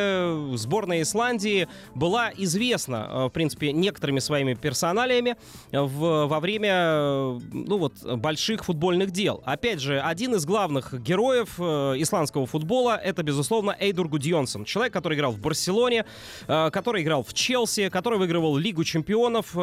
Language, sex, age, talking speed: Russian, male, 20-39, 130 wpm